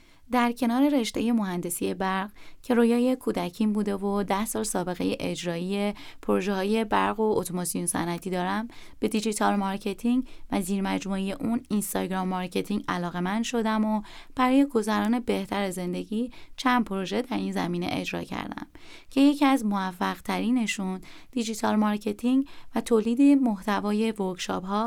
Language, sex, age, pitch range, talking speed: Persian, female, 20-39, 185-240 Hz, 130 wpm